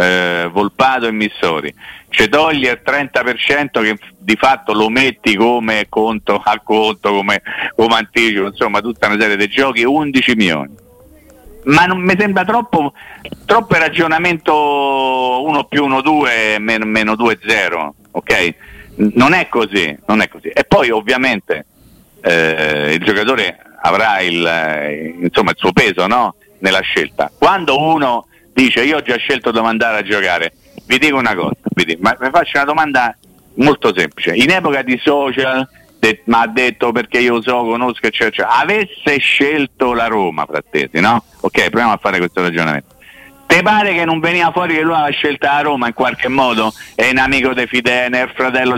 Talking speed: 165 wpm